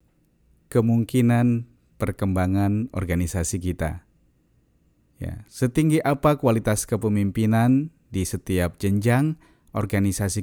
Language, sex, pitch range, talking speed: Indonesian, male, 95-130 Hz, 75 wpm